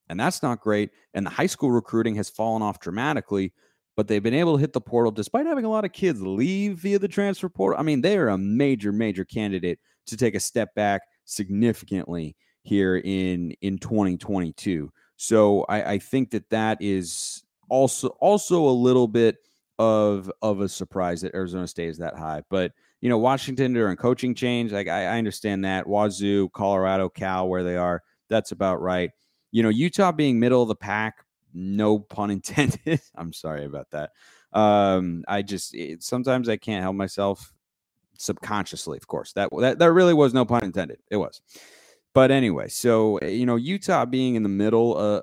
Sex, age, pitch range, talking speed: male, 30-49, 95-125 Hz, 190 wpm